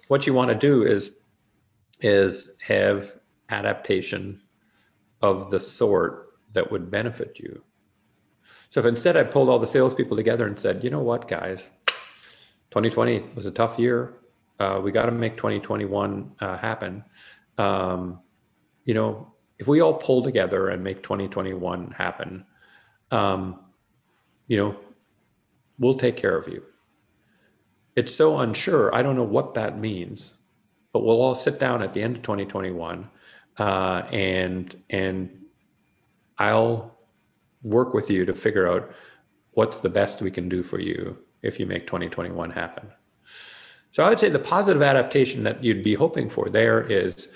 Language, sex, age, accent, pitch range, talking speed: English, male, 40-59, American, 95-115 Hz, 150 wpm